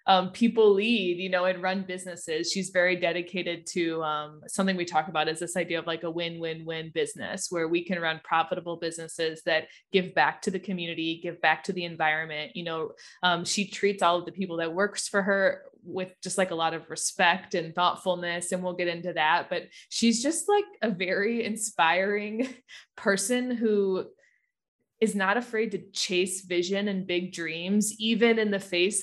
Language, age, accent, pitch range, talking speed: English, 20-39, American, 170-195 Hz, 190 wpm